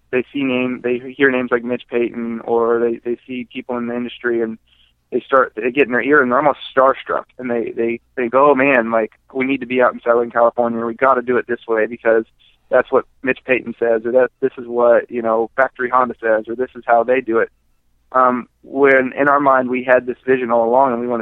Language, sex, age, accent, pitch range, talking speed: English, male, 20-39, American, 115-130 Hz, 250 wpm